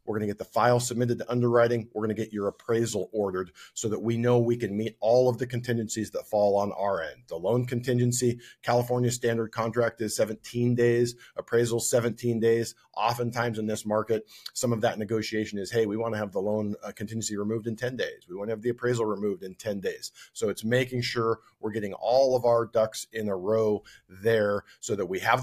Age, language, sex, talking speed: 40-59, English, male, 210 wpm